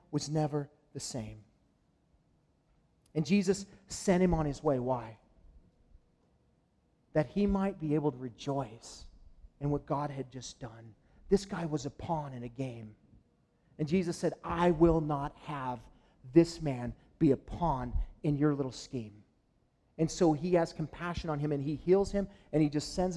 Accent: American